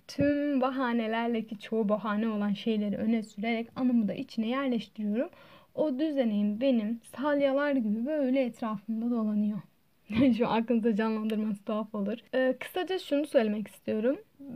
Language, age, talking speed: Turkish, 10-29, 130 wpm